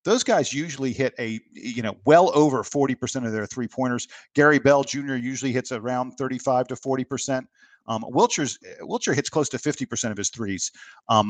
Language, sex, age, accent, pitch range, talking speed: English, male, 50-69, American, 115-140 Hz, 185 wpm